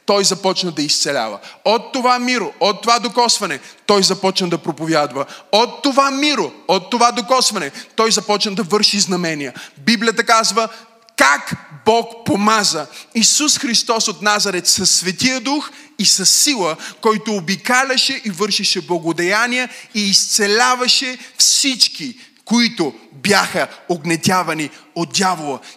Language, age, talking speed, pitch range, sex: Bulgarian, 30-49, 125 wpm, 180-245 Hz, male